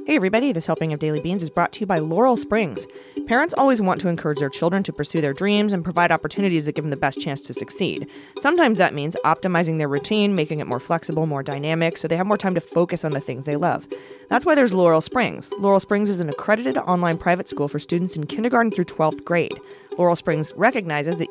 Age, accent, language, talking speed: 30-49, American, English, 235 wpm